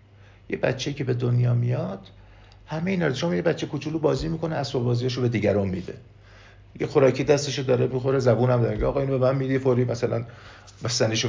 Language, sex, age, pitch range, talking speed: Persian, male, 50-69, 100-130 Hz, 195 wpm